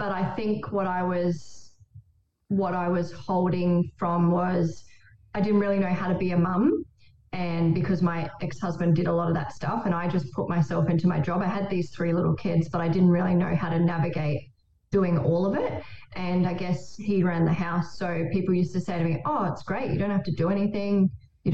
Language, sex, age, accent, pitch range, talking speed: English, female, 20-39, Australian, 165-185 Hz, 225 wpm